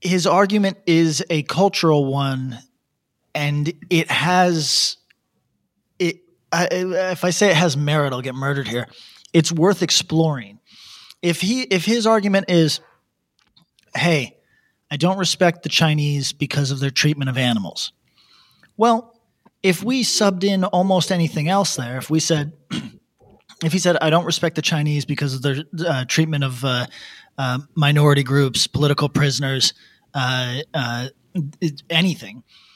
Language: English